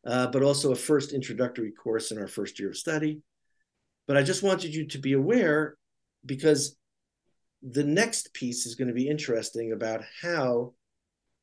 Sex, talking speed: male, 170 wpm